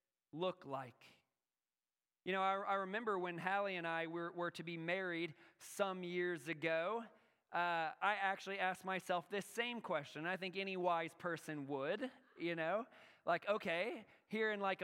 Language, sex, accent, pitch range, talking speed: English, male, American, 180-220 Hz, 160 wpm